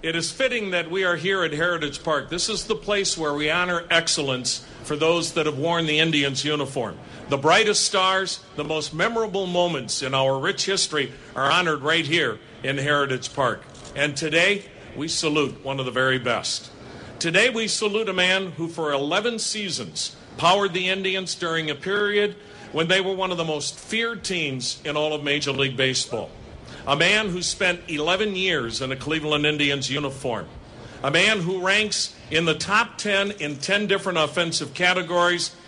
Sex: male